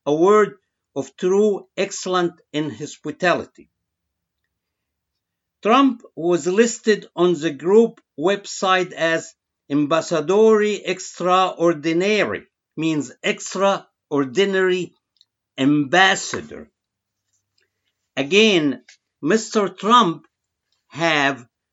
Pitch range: 145-205 Hz